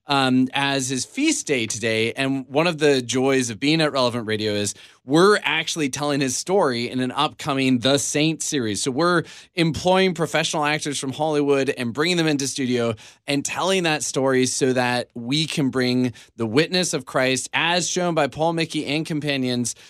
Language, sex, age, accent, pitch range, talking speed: English, male, 20-39, American, 135-165 Hz, 180 wpm